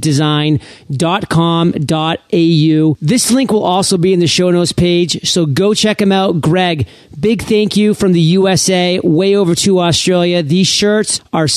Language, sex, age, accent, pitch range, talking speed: English, male, 40-59, American, 160-200 Hz, 155 wpm